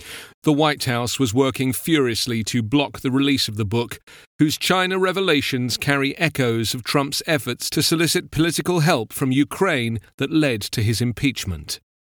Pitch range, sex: 115-155 Hz, male